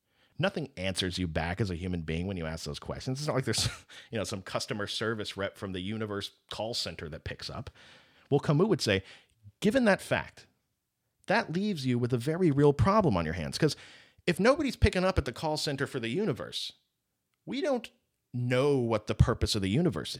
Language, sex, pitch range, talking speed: English, male, 105-170 Hz, 210 wpm